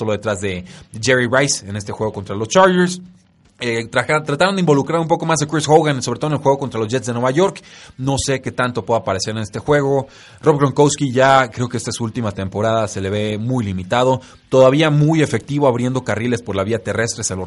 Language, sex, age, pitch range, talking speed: Spanish, male, 30-49, 105-135 Hz, 235 wpm